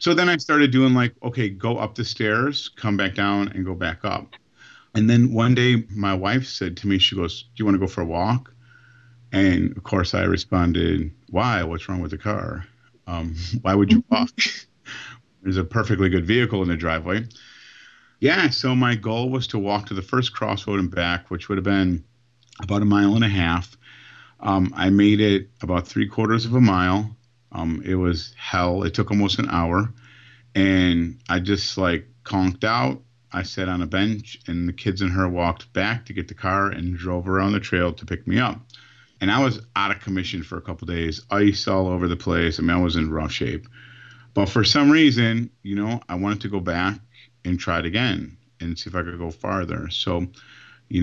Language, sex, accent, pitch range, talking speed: English, male, American, 90-115 Hz, 215 wpm